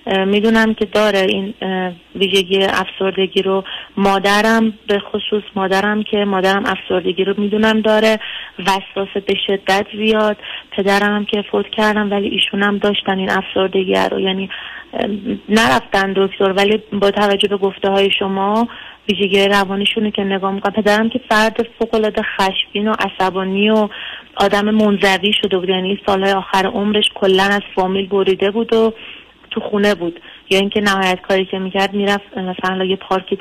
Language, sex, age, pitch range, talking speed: Persian, female, 30-49, 190-210 Hz, 150 wpm